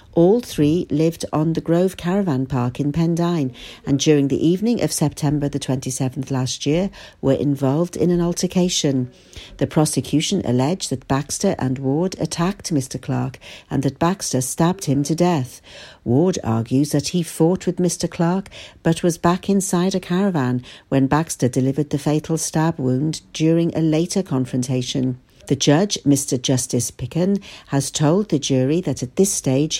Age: 60-79